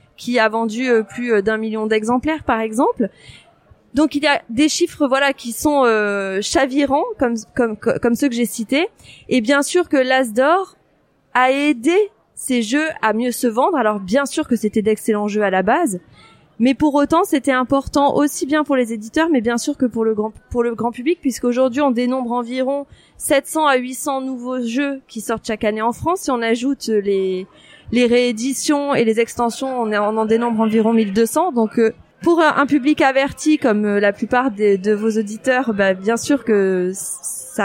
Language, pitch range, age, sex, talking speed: French, 225-280 Hz, 20-39, female, 185 wpm